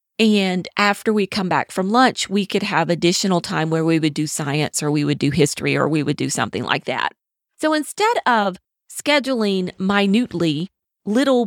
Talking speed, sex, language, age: 185 wpm, female, English, 40-59